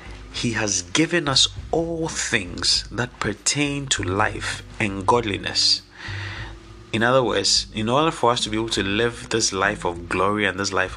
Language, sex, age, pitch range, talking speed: English, male, 30-49, 100-120 Hz, 170 wpm